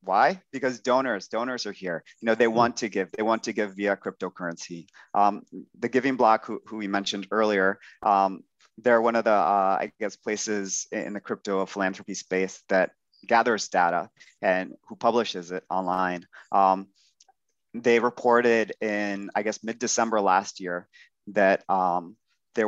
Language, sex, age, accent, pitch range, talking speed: English, male, 30-49, American, 95-115 Hz, 160 wpm